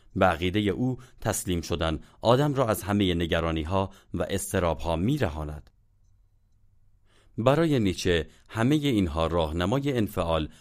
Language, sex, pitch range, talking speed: Persian, male, 85-110 Hz, 120 wpm